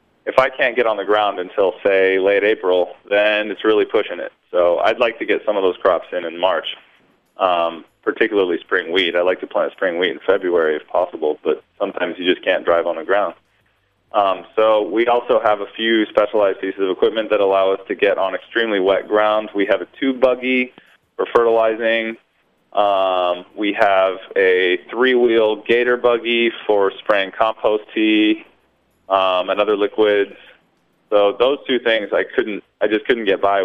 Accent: American